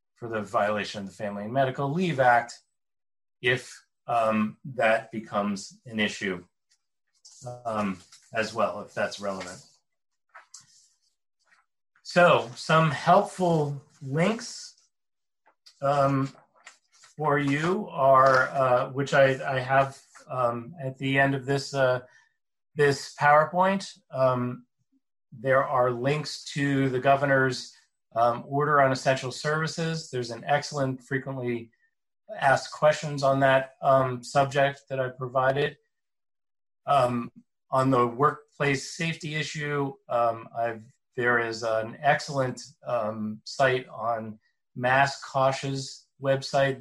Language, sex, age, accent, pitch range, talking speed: English, male, 30-49, American, 120-140 Hz, 110 wpm